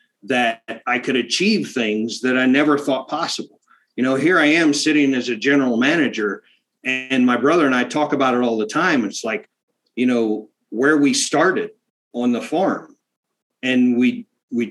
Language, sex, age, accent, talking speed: English, male, 40-59, American, 180 wpm